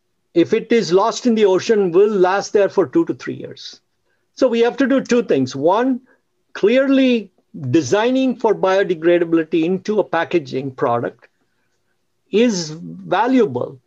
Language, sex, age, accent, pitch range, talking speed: English, male, 50-69, Indian, 160-215 Hz, 145 wpm